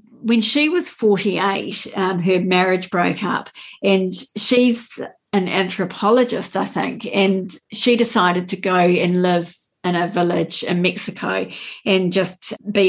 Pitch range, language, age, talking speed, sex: 175-205 Hz, English, 40-59, 140 wpm, female